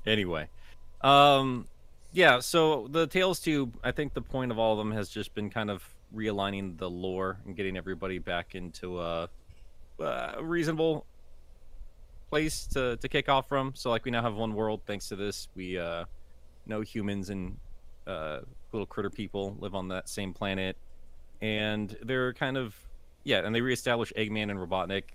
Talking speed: 170 wpm